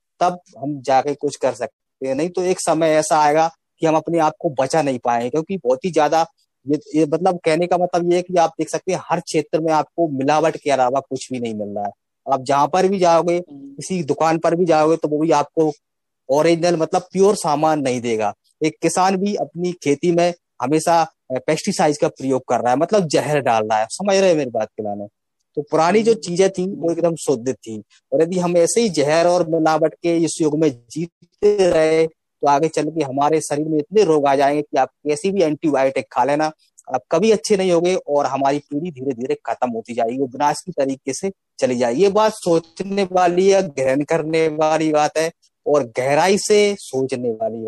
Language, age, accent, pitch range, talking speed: Hindi, 30-49, native, 145-175 Hz, 215 wpm